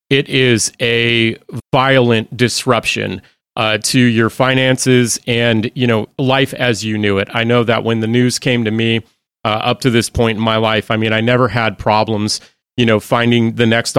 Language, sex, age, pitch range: English, male, 40-59, 110-125 Hz